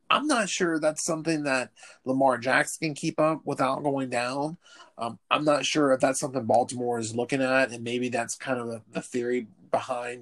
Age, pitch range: 30-49, 120-140 Hz